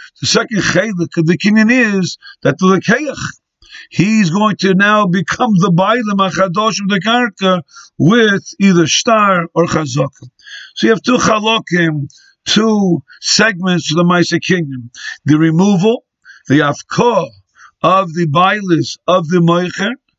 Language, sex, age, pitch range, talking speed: English, male, 50-69, 165-220 Hz, 140 wpm